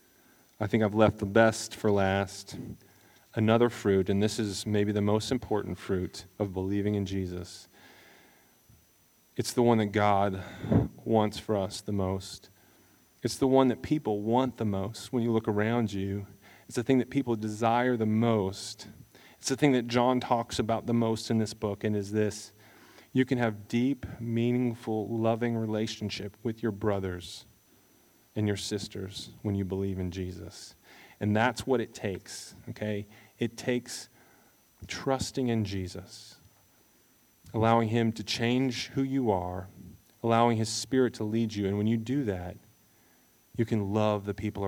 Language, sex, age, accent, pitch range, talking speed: English, male, 30-49, American, 100-115 Hz, 160 wpm